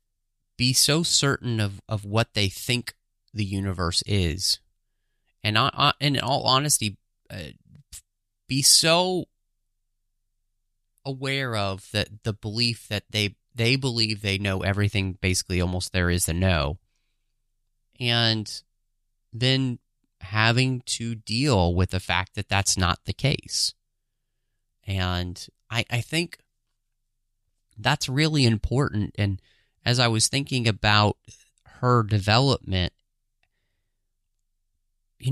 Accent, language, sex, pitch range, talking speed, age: American, English, male, 100-125 Hz, 115 wpm, 30-49